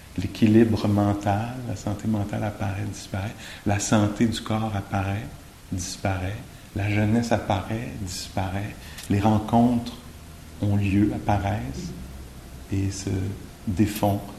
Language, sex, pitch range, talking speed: English, male, 100-120 Hz, 105 wpm